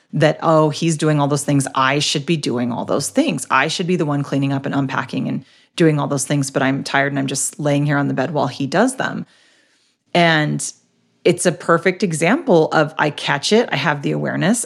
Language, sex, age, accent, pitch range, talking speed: English, female, 30-49, American, 145-195 Hz, 230 wpm